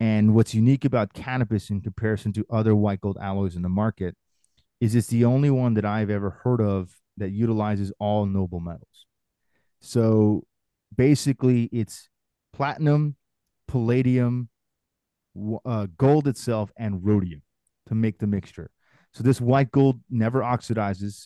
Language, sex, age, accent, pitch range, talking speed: English, male, 30-49, American, 100-120 Hz, 140 wpm